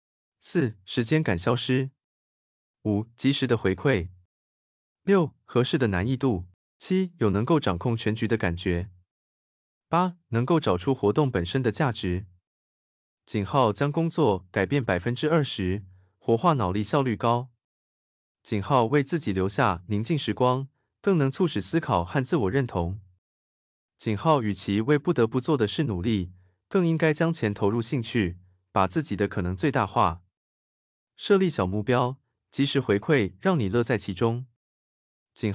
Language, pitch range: Chinese, 95-140 Hz